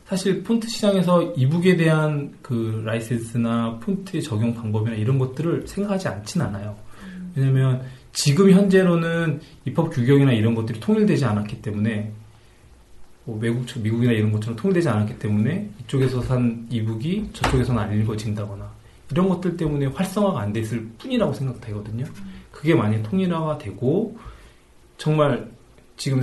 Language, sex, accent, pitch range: Korean, male, native, 110-155 Hz